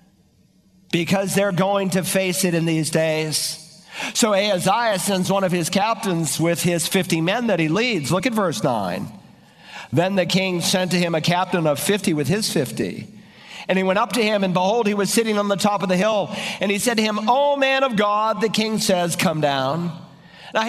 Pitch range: 175-225 Hz